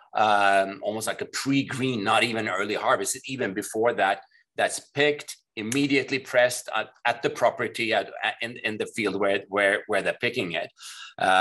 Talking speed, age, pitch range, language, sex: 175 wpm, 30-49, 105-130 Hz, English, male